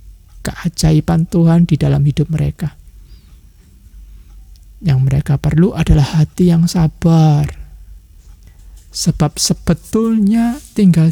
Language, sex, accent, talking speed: Indonesian, male, native, 85 wpm